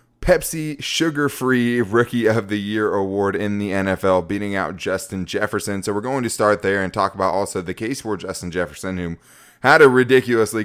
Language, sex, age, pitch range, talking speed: English, male, 20-39, 95-115 Hz, 185 wpm